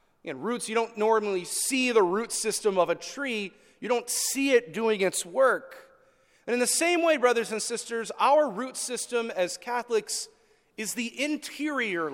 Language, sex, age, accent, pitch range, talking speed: English, male, 30-49, American, 200-275 Hz, 175 wpm